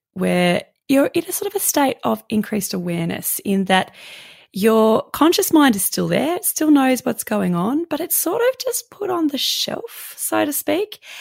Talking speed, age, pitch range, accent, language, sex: 200 wpm, 20-39, 175-290 Hz, Australian, English, female